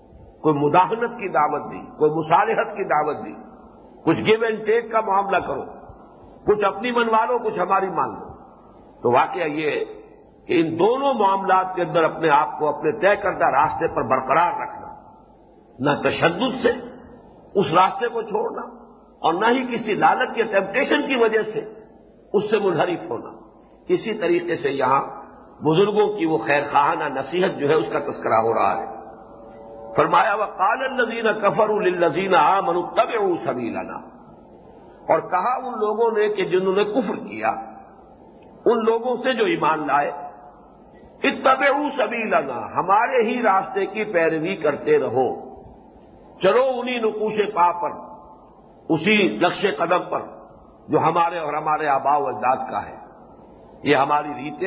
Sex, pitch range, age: male, 155-230 Hz, 50-69